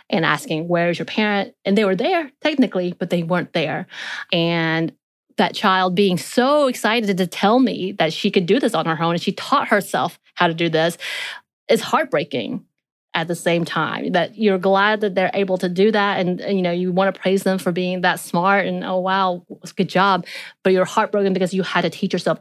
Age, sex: 30-49, female